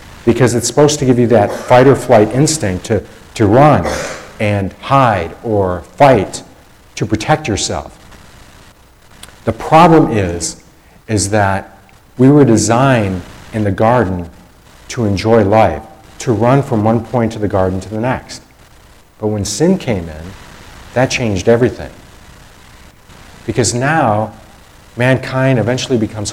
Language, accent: English, American